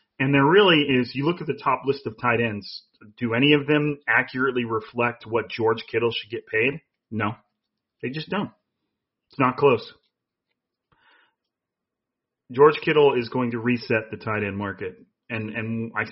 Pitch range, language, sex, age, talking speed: 115-140 Hz, English, male, 30-49, 170 wpm